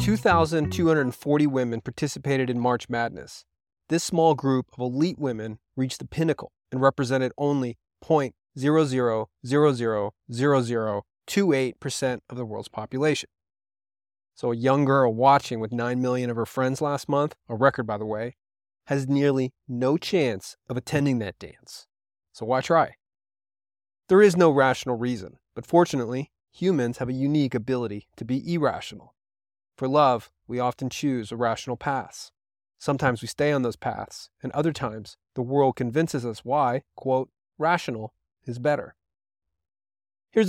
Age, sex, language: 30-49, male, English